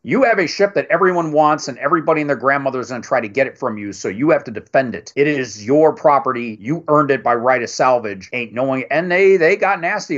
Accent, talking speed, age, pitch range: American, 265 wpm, 40-59, 120-160 Hz